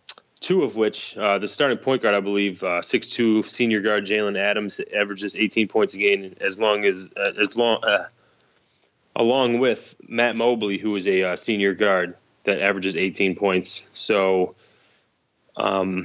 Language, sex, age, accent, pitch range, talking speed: English, male, 20-39, American, 95-110 Hz, 160 wpm